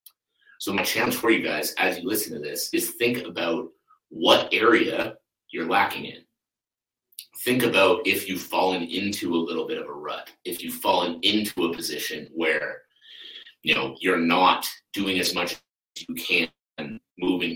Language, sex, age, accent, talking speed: English, male, 30-49, American, 165 wpm